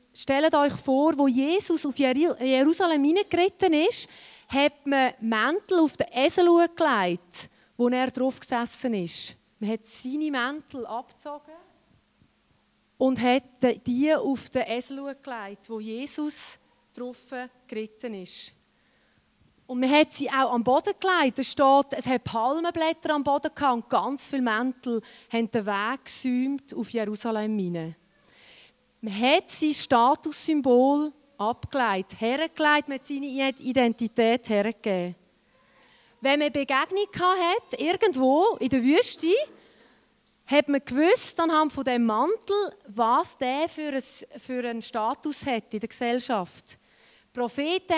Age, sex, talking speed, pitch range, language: 30-49, female, 130 wpm, 240-310 Hz, German